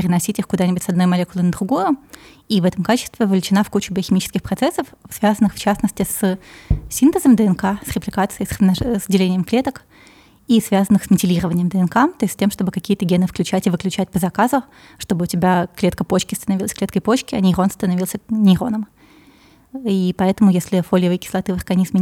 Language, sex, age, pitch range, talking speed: Russian, female, 20-39, 185-215 Hz, 175 wpm